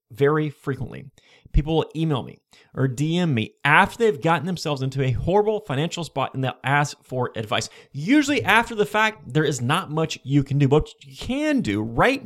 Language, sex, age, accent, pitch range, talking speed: English, male, 30-49, American, 135-195 Hz, 190 wpm